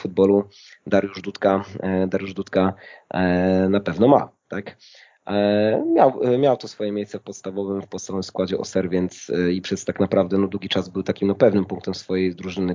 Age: 20-39